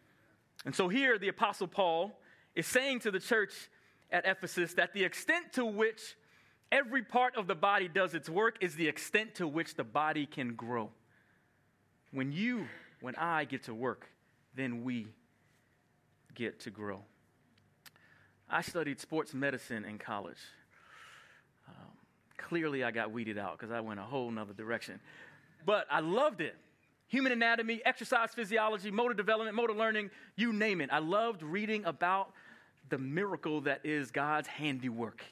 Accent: American